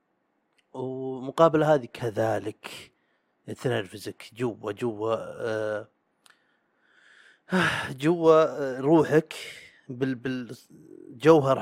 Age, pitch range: 30-49, 140-175 Hz